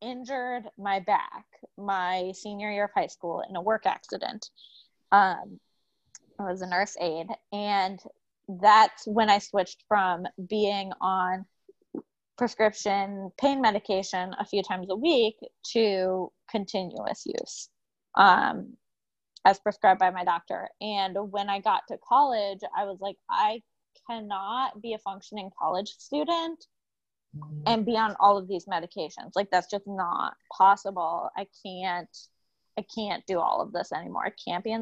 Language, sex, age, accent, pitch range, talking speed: English, female, 20-39, American, 190-225 Hz, 145 wpm